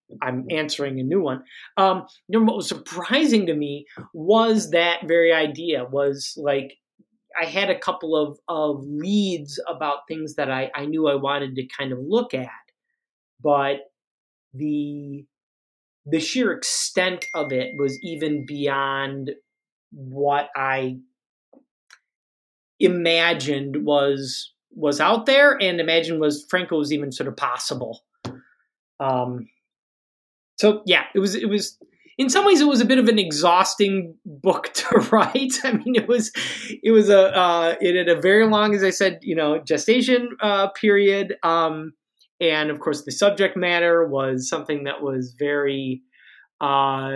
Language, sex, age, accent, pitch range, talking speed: English, male, 30-49, American, 140-195 Hz, 150 wpm